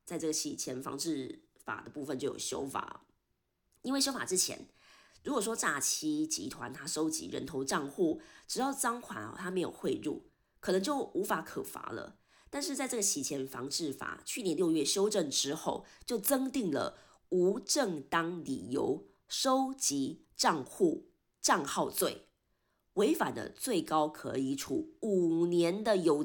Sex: female